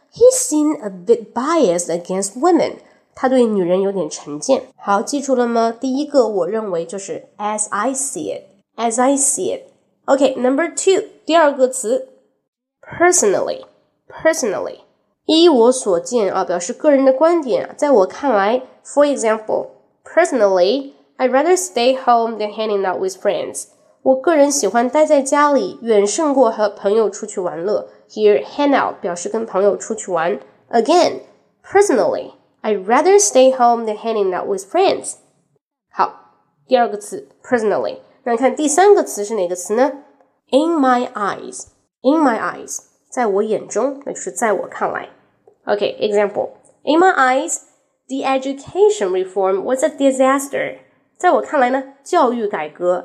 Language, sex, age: Chinese, female, 20-39